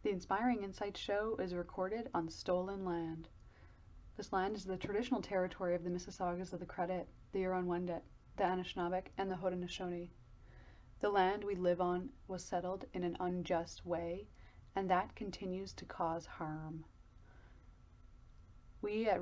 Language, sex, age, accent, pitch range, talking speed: English, female, 30-49, American, 170-195 Hz, 145 wpm